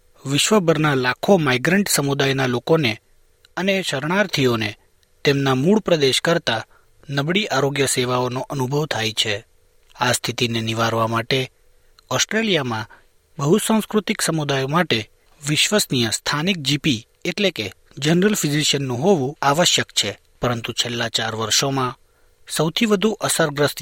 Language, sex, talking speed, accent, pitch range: Gujarati, male, 105 wpm, native, 120-175 Hz